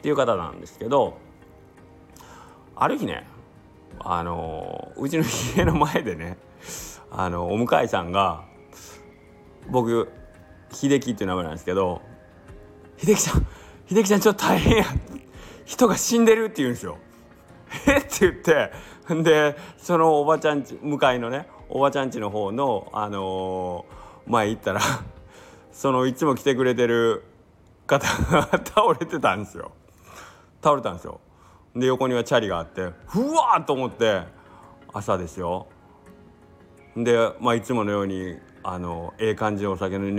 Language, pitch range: Japanese, 95-140 Hz